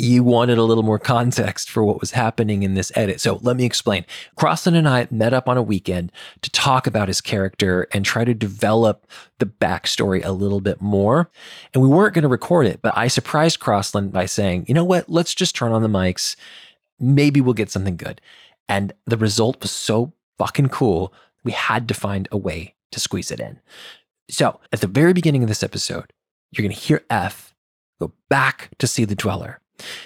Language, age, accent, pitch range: English, 20-39, American, 100-130 Hz